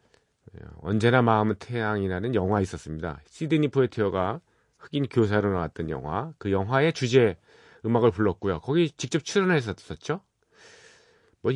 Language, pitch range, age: Korean, 100-140 Hz, 40-59